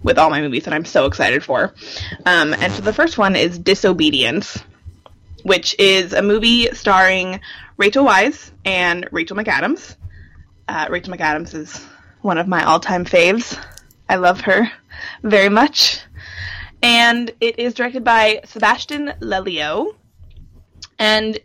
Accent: American